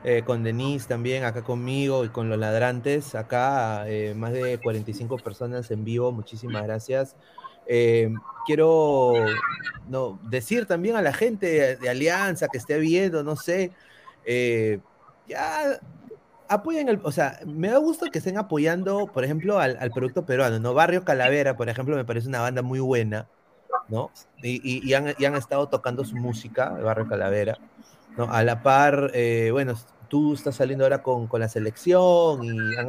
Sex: male